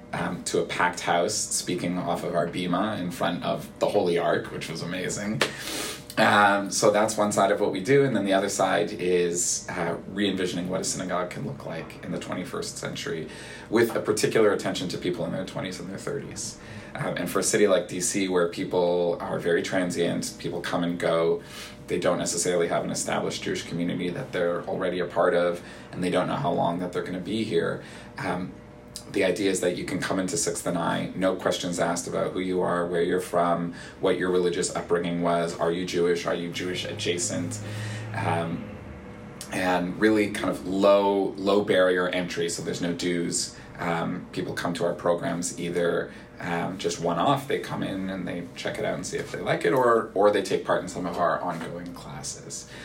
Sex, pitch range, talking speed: male, 85-95 Hz, 205 wpm